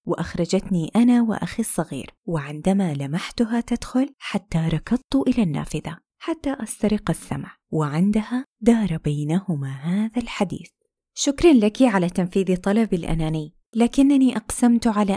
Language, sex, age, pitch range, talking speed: Arabic, female, 20-39, 185-255 Hz, 110 wpm